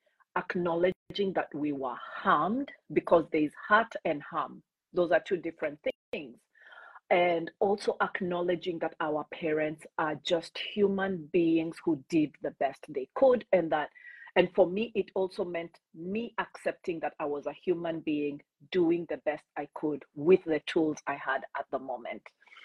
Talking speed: 155 wpm